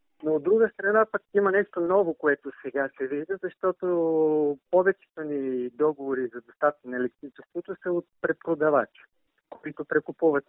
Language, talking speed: Bulgarian, 145 wpm